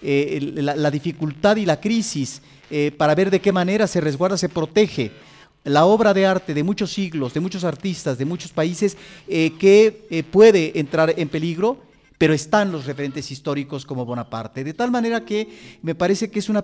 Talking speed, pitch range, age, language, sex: 190 wpm, 145-190 Hz, 40-59, Spanish, male